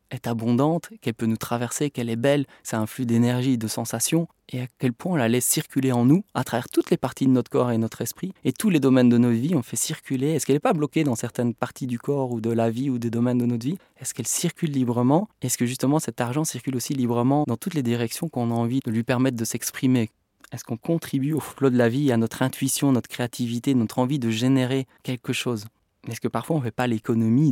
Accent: French